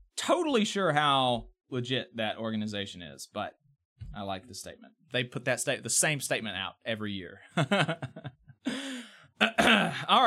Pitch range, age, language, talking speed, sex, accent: 140-230 Hz, 30-49, English, 135 wpm, male, American